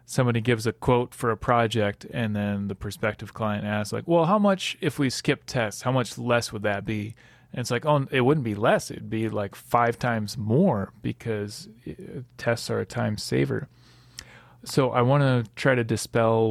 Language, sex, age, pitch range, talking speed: English, male, 30-49, 110-130 Hz, 195 wpm